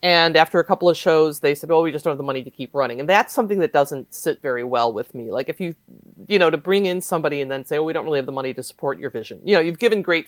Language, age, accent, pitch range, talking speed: English, 40-59, American, 135-180 Hz, 335 wpm